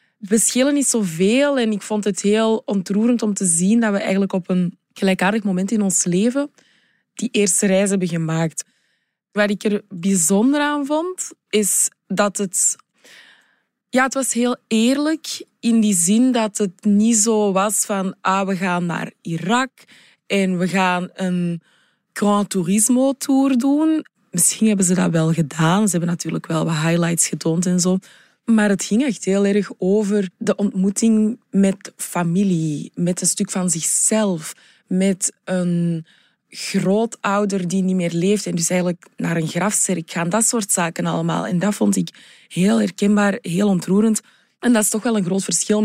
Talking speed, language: 170 wpm, Dutch